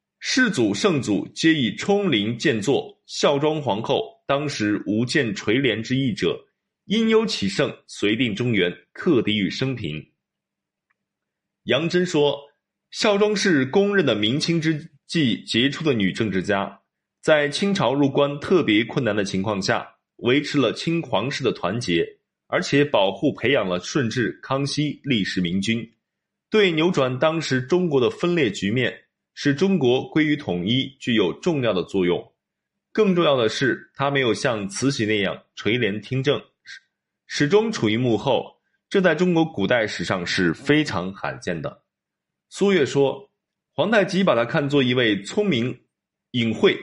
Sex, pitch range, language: male, 115-185 Hz, Chinese